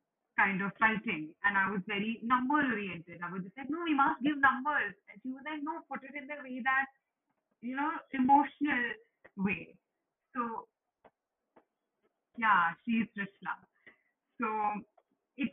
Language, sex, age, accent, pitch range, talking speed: English, female, 30-49, Indian, 205-265 Hz, 150 wpm